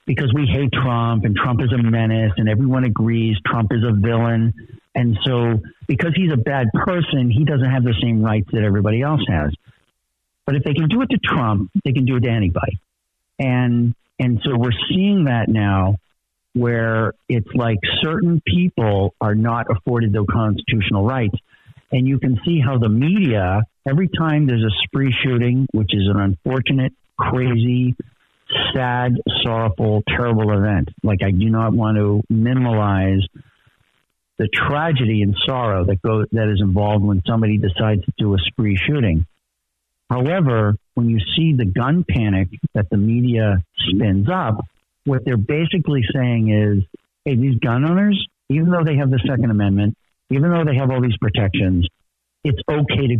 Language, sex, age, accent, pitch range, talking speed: English, male, 60-79, American, 105-130 Hz, 170 wpm